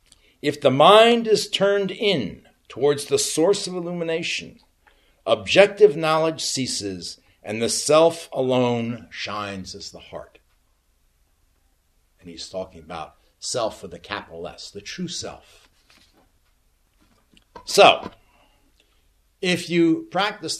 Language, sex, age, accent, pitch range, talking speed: English, male, 60-79, American, 110-180 Hz, 110 wpm